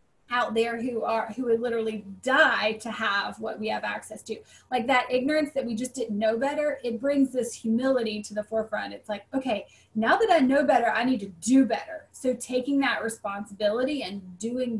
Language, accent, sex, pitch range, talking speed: English, American, female, 220-265 Hz, 205 wpm